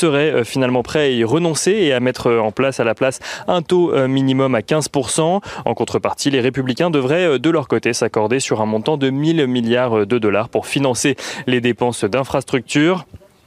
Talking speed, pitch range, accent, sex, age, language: 185 wpm, 125-155 Hz, French, male, 20-39, French